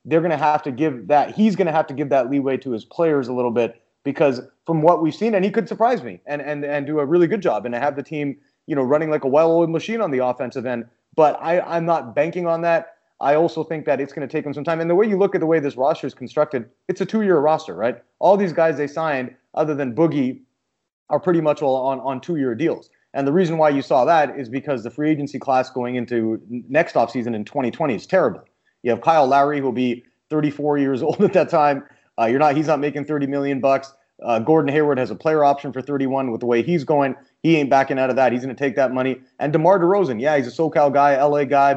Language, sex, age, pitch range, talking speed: English, male, 30-49, 130-165 Hz, 265 wpm